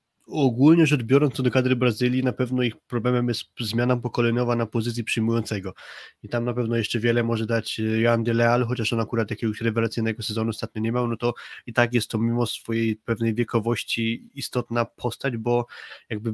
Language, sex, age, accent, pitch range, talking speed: Polish, male, 20-39, native, 115-130 Hz, 185 wpm